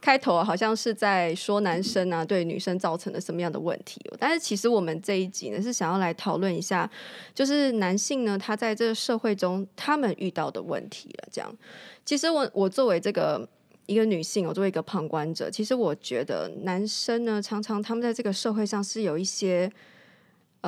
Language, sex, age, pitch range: Chinese, female, 20-39, 180-225 Hz